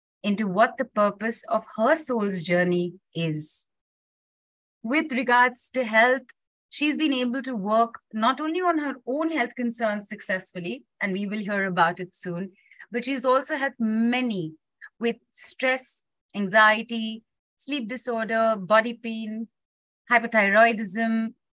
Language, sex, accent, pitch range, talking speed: English, female, Indian, 195-245 Hz, 130 wpm